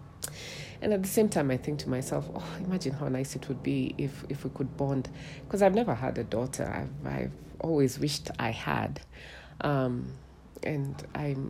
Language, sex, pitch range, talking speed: English, female, 130-160 Hz, 190 wpm